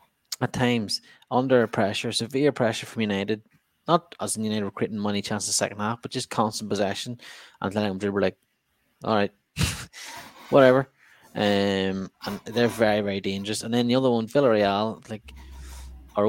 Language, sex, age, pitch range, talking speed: English, male, 20-39, 95-115 Hz, 160 wpm